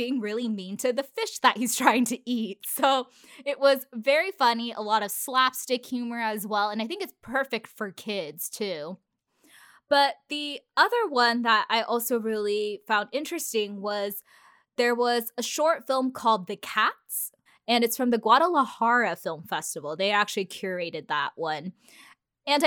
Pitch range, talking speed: 205-270 Hz, 165 wpm